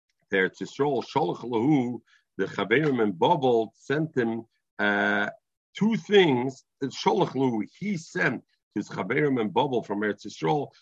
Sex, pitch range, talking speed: male, 110-155 Hz, 95 wpm